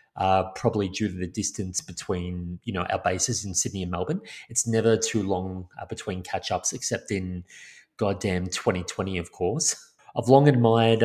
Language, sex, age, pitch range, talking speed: English, male, 30-49, 95-115 Hz, 170 wpm